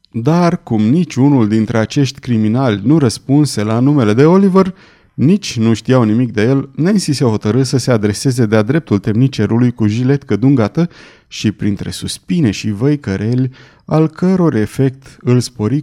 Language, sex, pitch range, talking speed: Romanian, male, 110-150 Hz, 150 wpm